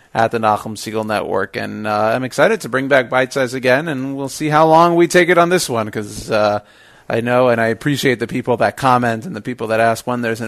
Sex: male